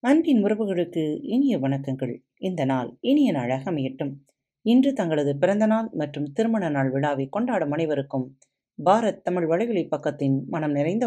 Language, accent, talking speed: Tamil, native, 135 wpm